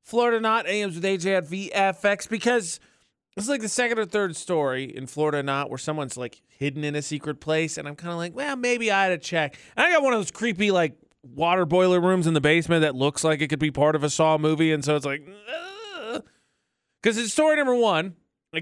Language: English